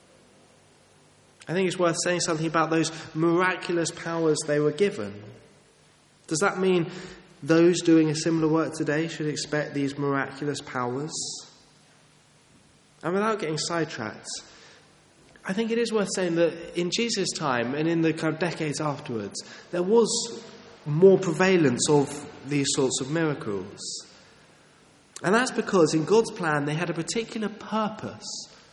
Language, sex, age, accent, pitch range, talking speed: English, male, 20-39, British, 145-185 Hz, 140 wpm